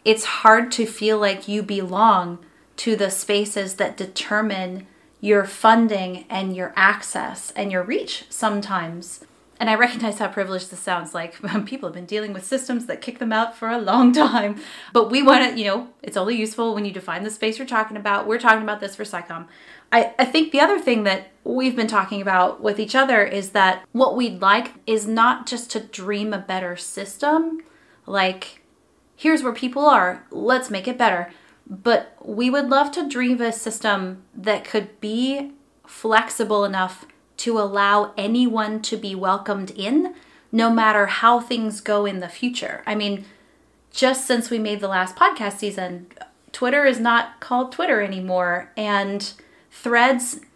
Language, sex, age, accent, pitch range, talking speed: English, female, 30-49, American, 195-250 Hz, 175 wpm